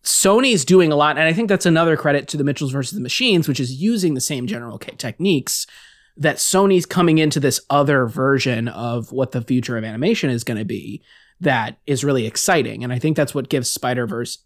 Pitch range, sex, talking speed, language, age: 125-165 Hz, male, 210 wpm, English, 20-39